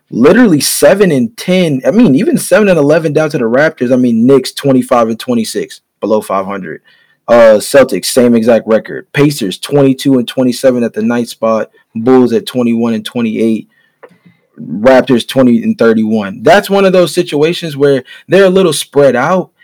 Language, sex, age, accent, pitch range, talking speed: English, male, 20-39, American, 120-170 Hz, 170 wpm